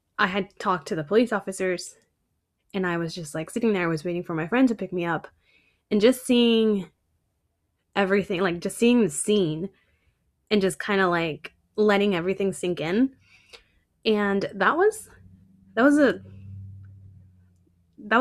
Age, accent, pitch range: 10-29, American, 155-210 Hz